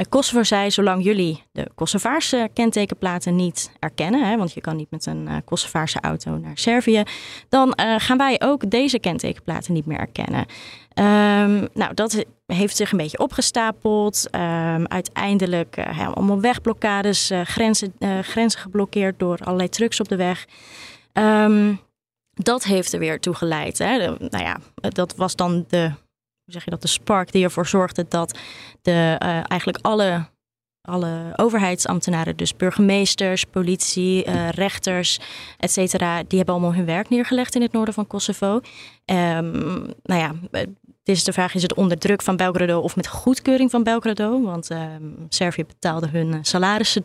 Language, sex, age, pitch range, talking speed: Dutch, female, 20-39, 170-220 Hz, 160 wpm